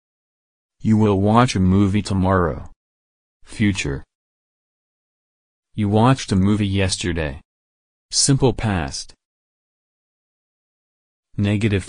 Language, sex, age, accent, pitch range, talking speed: English, male, 30-49, American, 90-110 Hz, 75 wpm